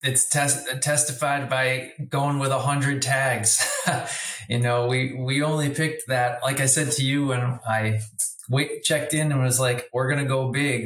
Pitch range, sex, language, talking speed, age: 125-135 Hz, male, English, 175 wpm, 20-39